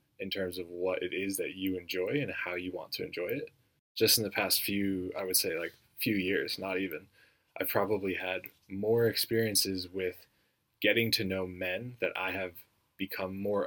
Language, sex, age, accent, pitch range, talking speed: English, male, 20-39, American, 90-115 Hz, 195 wpm